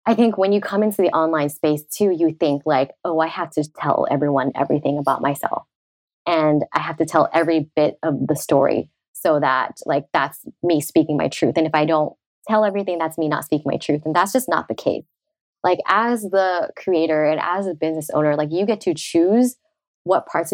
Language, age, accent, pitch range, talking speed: English, 20-39, American, 150-200 Hz, 215 wpm